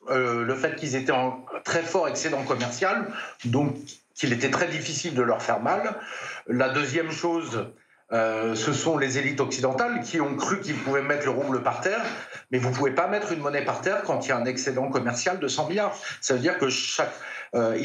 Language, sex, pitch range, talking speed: French, male, 125-155 Hz, 215 wpm